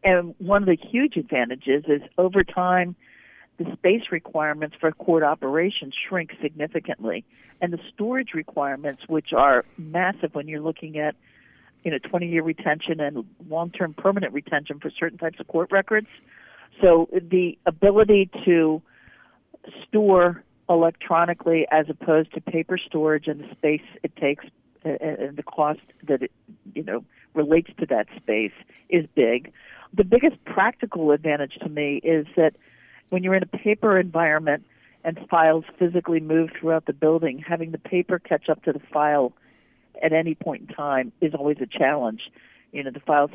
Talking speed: 160 wpm